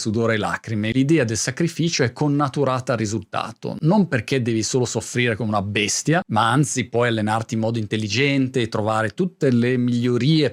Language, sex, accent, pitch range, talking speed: Italian, male, native, 115-150 Hz, 170 wpm